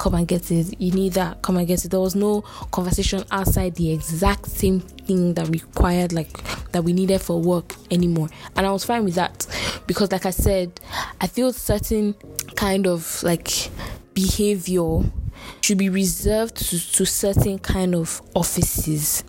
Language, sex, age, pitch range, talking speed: English, female, 10-29, 175-200 Hz, 170 wpm